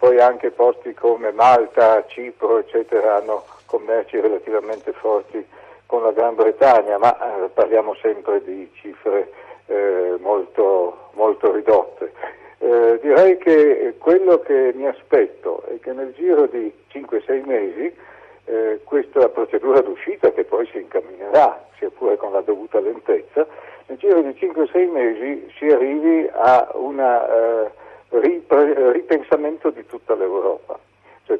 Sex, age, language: male, 60-79, Italian